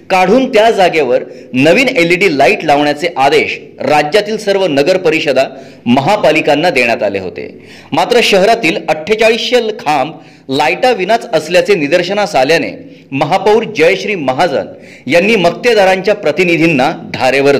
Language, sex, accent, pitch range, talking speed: Marathi, male, native, 160-220 Hz, 110 wpm